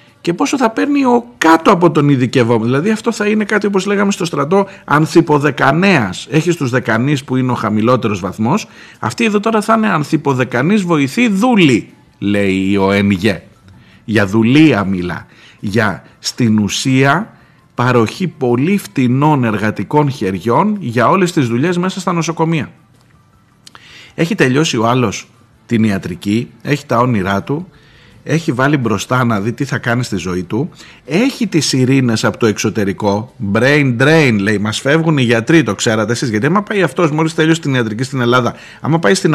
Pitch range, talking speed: 115-160 Hz, 160 wpm